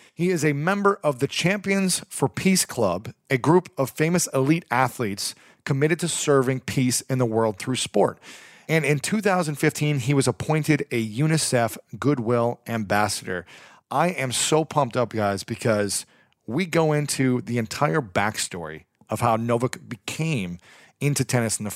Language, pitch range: English, 115-150 Hz